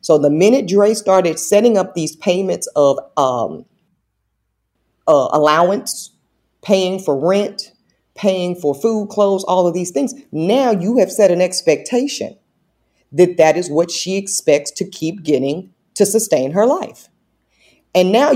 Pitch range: 155-205 Hz